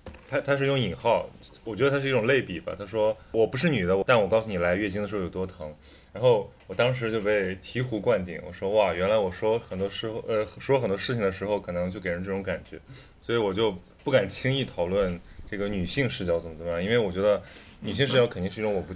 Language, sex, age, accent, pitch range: Chinese, male, 20-39, Polish, 90-115 Hz